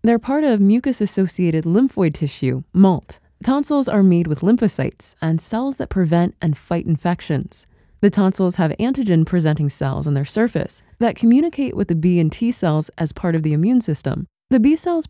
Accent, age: American, 20-39